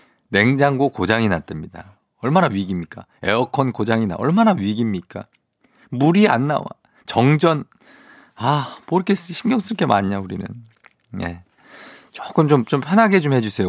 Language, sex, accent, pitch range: Korean, male, native, 95-140 Hz